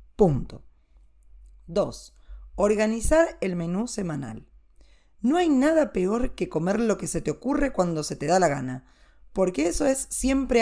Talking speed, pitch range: 155 wpm, 165-225 Hz